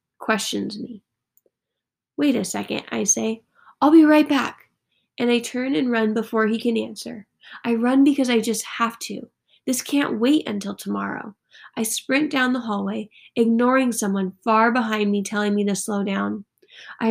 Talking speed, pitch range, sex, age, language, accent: 170 wpm, 210-250 Hz, female, 10-29, English, American